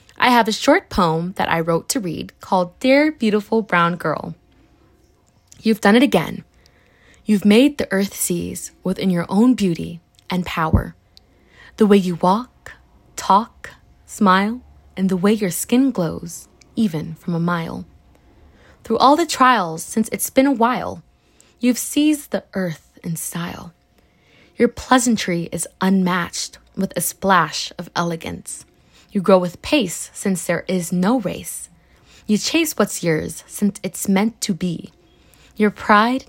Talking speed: 150 wpm